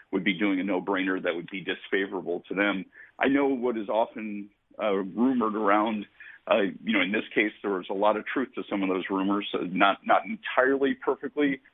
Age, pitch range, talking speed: 50-69, 100-110 Hz, 210 wpm